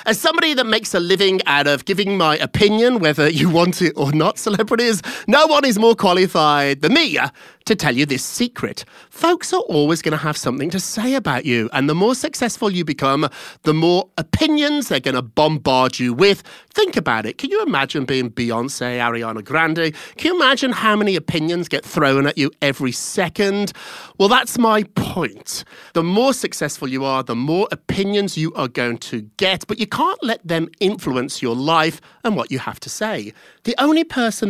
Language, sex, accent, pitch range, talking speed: English, male, British, 140-220 Hz, 195 wpm